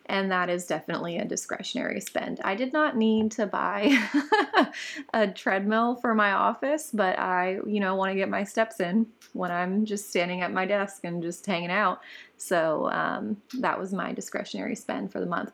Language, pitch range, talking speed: English, 170-225 Hz, 190 wpm